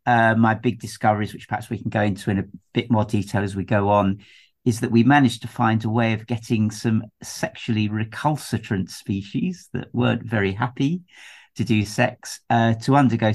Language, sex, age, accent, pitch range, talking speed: English, male, 50-69, British, 105-120 Hz, 195 wpm